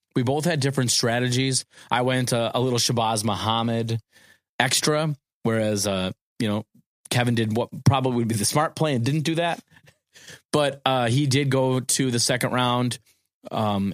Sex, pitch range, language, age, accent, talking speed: male, 110-135 Hz, English, 30-49, American, 170 wpm